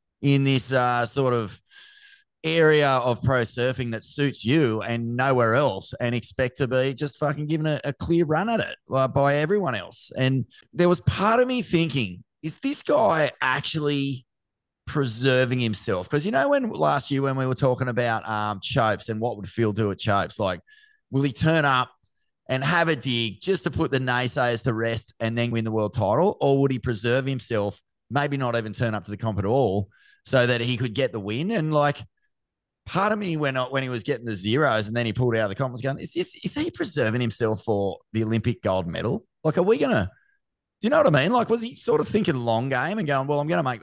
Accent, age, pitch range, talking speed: Australian, 30-49, 115-145 Hz, 230 wpm